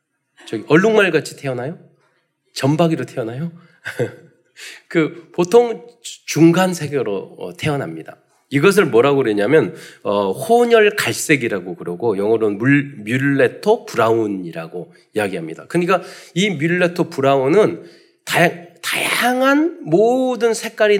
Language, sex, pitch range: Korean, male, 145-220 Hz